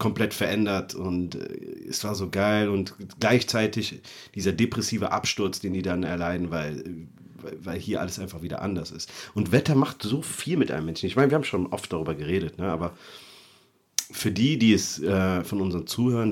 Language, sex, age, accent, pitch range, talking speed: German, male, 40-59, German, 90-115 Hz, 180 wpm